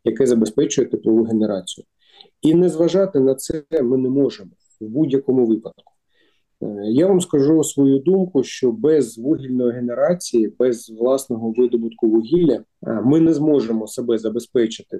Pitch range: 120-160 Hz